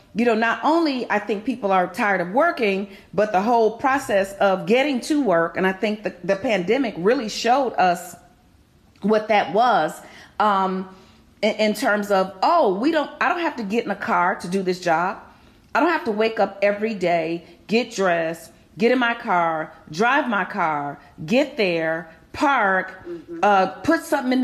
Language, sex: English, female